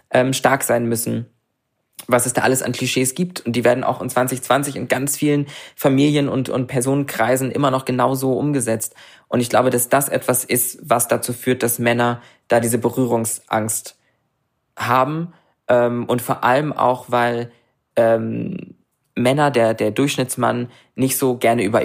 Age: 20-39